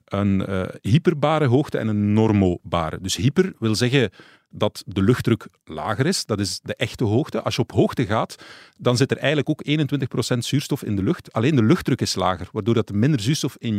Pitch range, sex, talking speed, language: 105-140 Hz, male, 200 wpm, Dutch